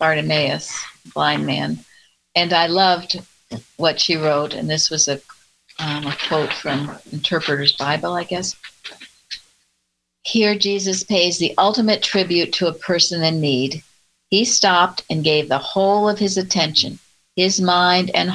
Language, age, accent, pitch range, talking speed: English, 60-79, American, 145-190 Hz, 145 wpm